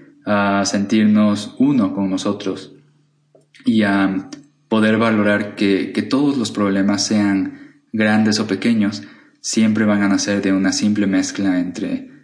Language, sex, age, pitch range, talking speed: Spanish, male, 20-39, 95-110 Hz, 130 wpm